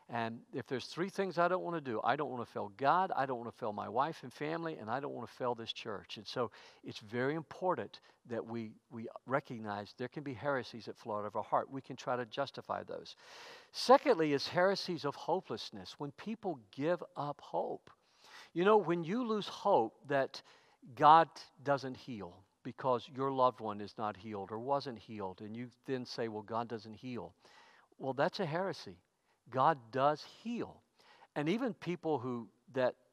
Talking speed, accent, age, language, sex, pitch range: 195 wpm, American, 50-69, English, male, 115-165 Hz